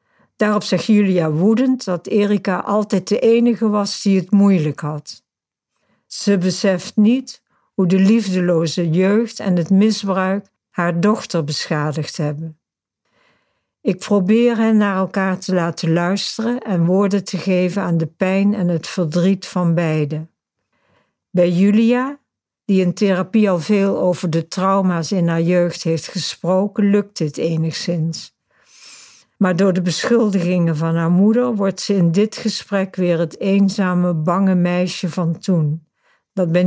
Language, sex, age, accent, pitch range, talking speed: Dutch, female, 60-79, Dutch, 170-205 Hz, 140 wpm